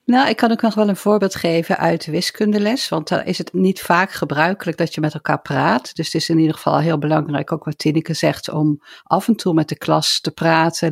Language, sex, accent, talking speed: Dutch, female, Dutch, 255 wpm